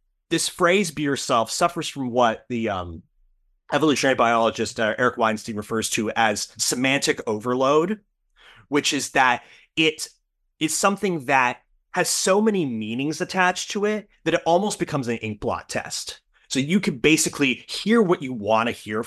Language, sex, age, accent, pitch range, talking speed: English, male, 30-49, American, 115-180 Hz, 155 wpm